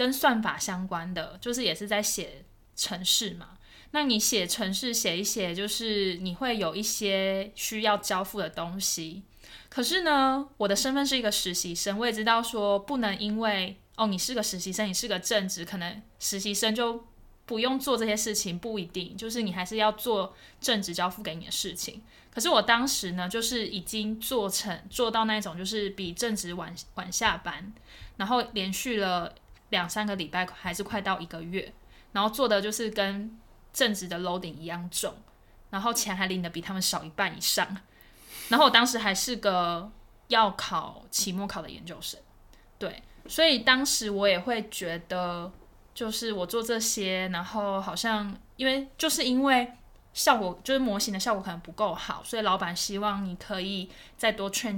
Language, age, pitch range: Chinese, 20-39, 185-230 Hz